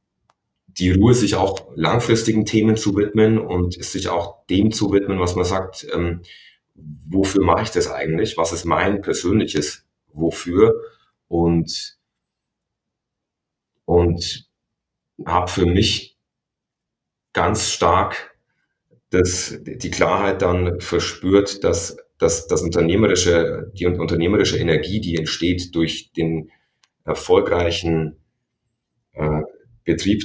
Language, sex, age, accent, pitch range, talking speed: German, male, 30-49, German, 80-100 Hz, 105 wpm